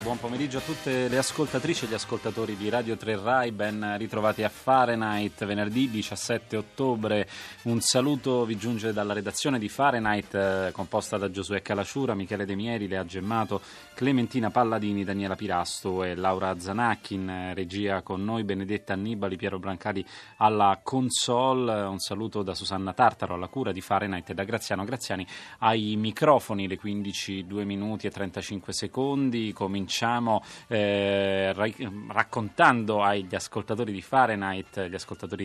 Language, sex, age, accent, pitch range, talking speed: Italian, male, 30-49, native, 95-115 Hz, 140 wpm